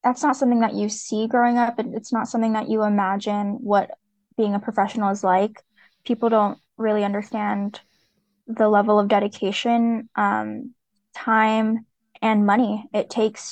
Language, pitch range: English, 205-235 Hz